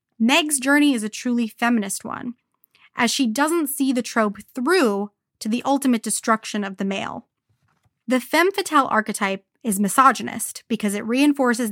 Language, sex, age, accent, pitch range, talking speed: English, female, 20-39, American, 210-275 Hz, 155 wpm